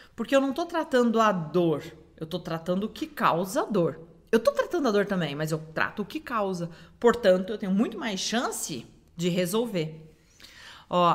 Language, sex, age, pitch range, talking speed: Portuguese, female, 40-59, 170-250 Hz, 190 wpm